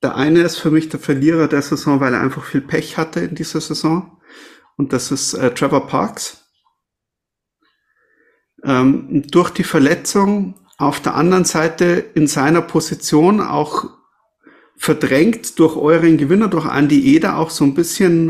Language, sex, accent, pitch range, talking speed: German, male, German, 140-175 Hz, 155 wpm